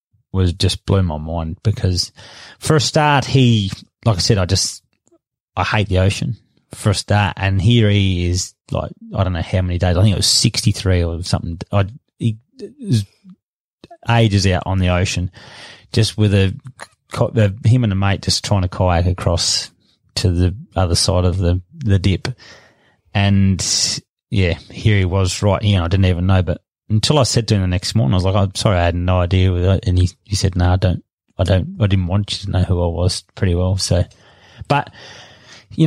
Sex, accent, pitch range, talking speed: male, Australian, 95-115 Hz, 205 wpm